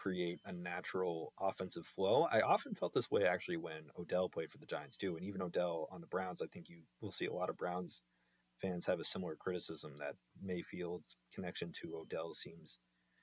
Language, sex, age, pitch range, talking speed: English, male, 30-49, 80-105 Hz, 200 wpm